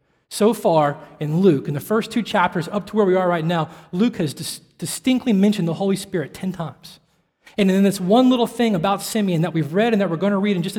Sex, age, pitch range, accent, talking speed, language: male, 20-39, 150-195 Hz, American, 250 wpm, English